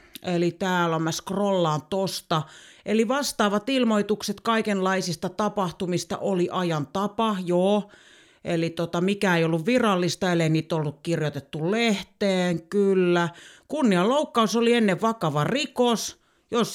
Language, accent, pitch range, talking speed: Finnish, native, 170-225 Hz, 120 wpm